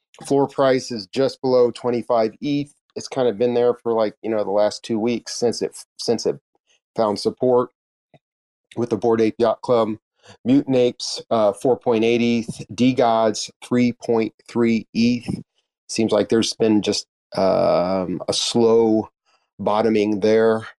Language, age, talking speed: English, 40-59, 145 wpm